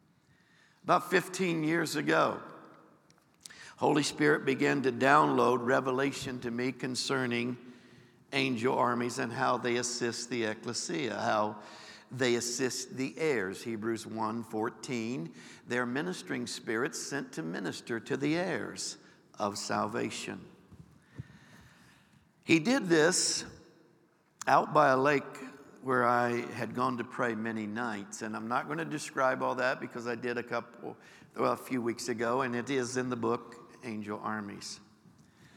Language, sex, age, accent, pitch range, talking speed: English, male, 60-79, American, 120-135 Hz, 135 wpm